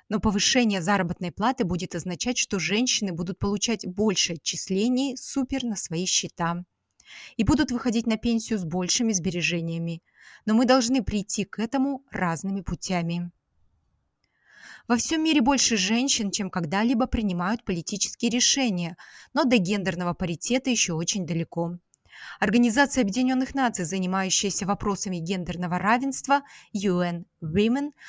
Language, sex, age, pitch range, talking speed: Russian, female, 20-39, 180-245 Hz, 125 wpm